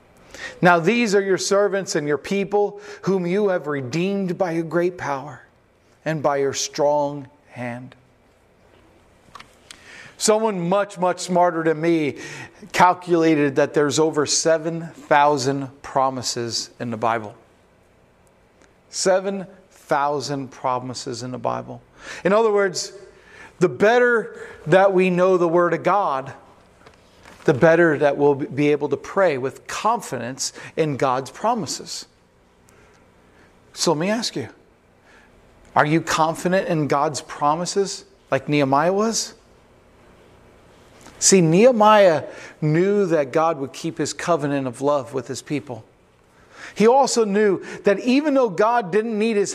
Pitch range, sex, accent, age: 135-195 Hz, male, American, 40-59